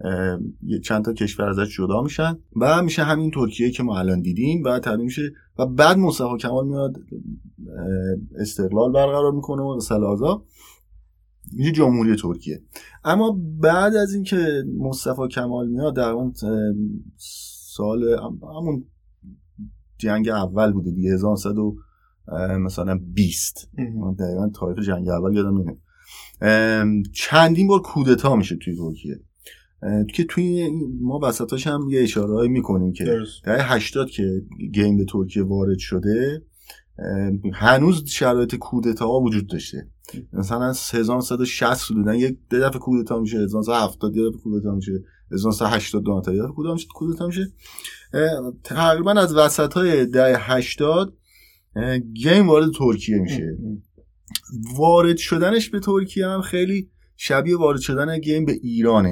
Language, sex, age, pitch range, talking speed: Persian, male, 30-49, 100-145 Hz, 125 wpm